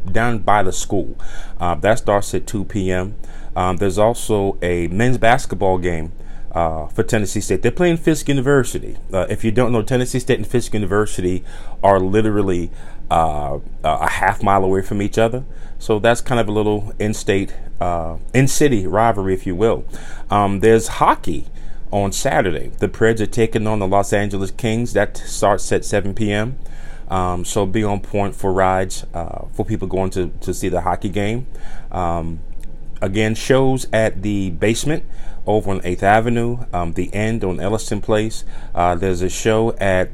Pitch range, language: 90-110 Hz, English